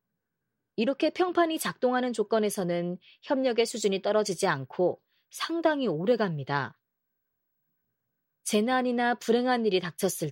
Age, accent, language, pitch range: 30-49, native, Korean, 170-245 Hz